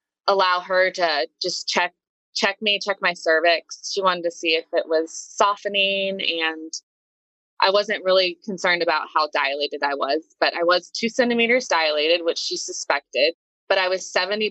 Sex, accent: female, American